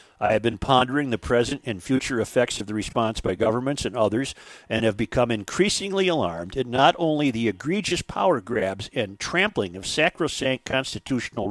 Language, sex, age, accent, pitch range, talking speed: English, male, 50-69, American, 110-145 Hz, 170 wpm